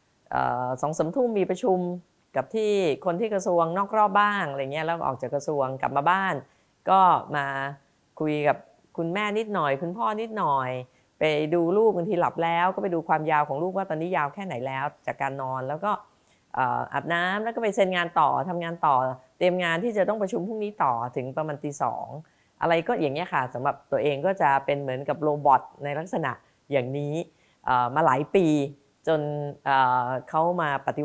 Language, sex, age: Thai, female, 30-49